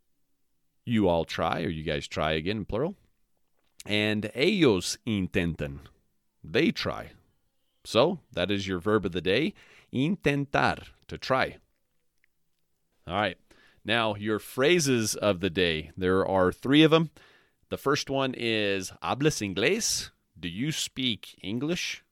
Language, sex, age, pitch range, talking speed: English, male, 30-49, 95-130 Hz, 135 wpm